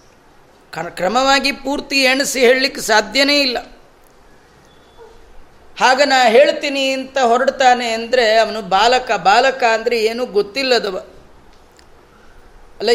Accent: native